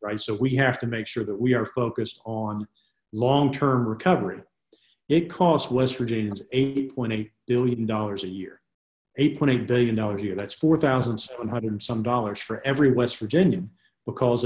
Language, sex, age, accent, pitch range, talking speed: English, male, 40-59, American, 105-125 Hz, 150 wpm